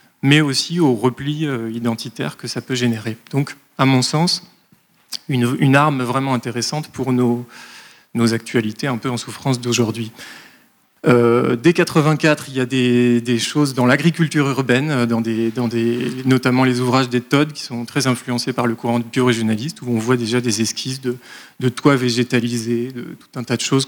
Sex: male